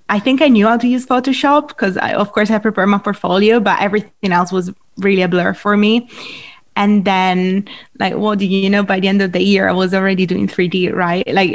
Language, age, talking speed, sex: English, 20-39, 235 wpm, female